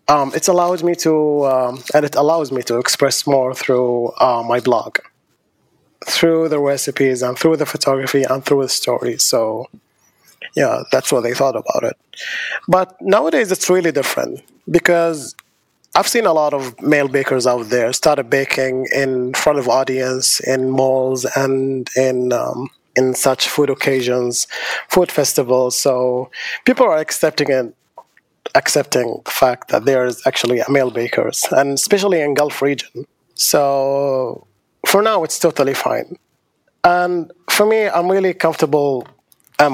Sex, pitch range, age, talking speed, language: male, 130-150 Hz, 20-39, 150 wpm, English